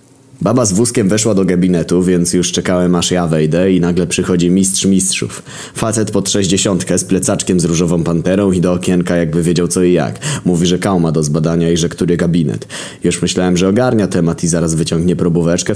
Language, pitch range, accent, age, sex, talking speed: Polish, 85-105 Hz, native, 20-39, male, 195 wpm